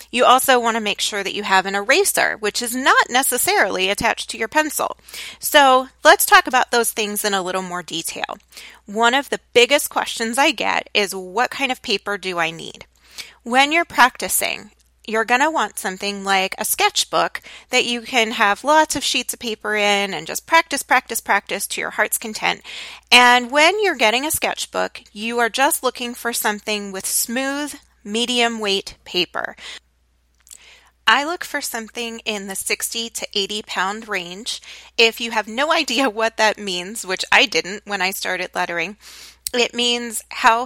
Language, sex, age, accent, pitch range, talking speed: English, female, 30-49, American, 205-260 Hz, 175 wpm